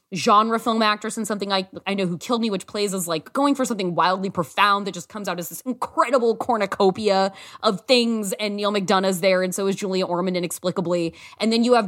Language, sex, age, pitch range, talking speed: English, female, 20-39, 180-245 Hz, 220 wpm